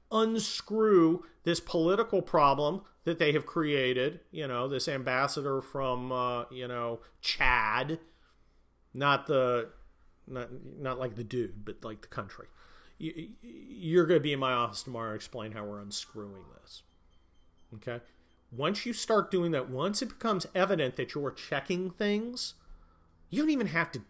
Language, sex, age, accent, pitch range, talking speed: English, male, 40-59, American, 120-175 Hz, 155 wpm